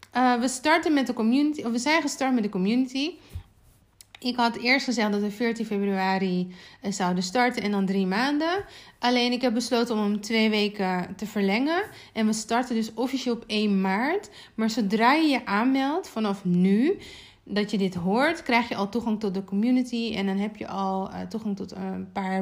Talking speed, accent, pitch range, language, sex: 195 wpm, Dutch, 200-255 Hz, Dutch, female